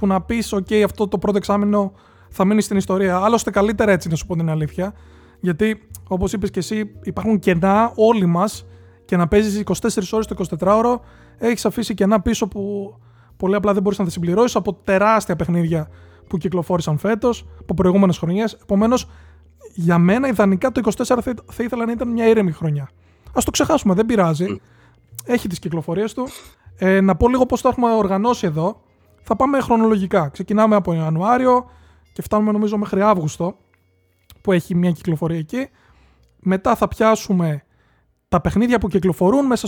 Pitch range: 170-220 Hz